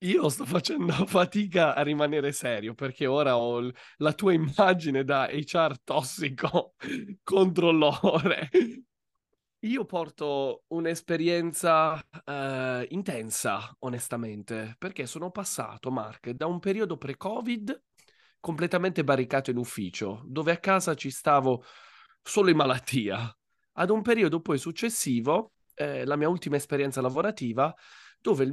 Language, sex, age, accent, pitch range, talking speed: Italian, male, 30-49, native, 130-185 Hz, 115 wpm